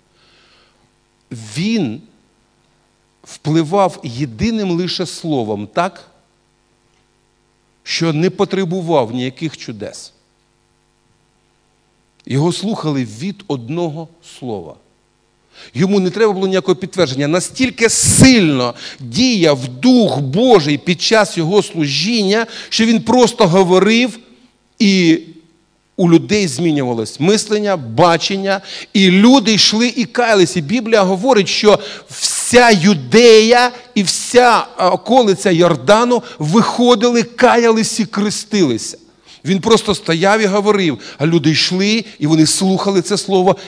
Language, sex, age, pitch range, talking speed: Russian, male, 50-69, 155-215 Hz, 100 wpm